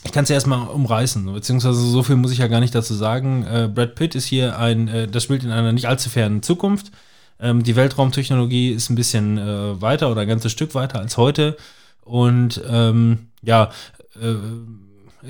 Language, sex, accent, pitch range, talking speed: German, male, German, 110-130 Hz, 195 wpm